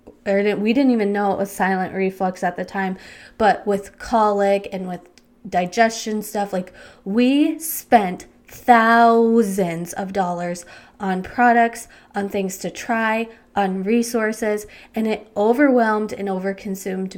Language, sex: English, female